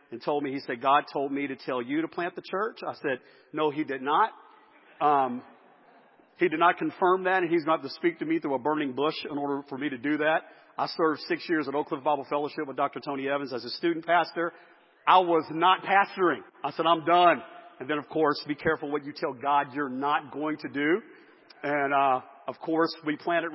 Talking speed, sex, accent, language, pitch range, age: 235 wpm, male, American, English, 140-165 Hz, 50-69